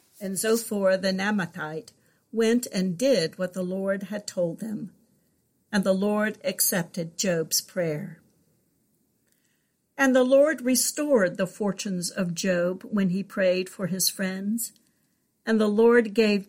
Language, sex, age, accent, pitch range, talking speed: English, female, 60-79, American, 180-220 Hz, 135 wpm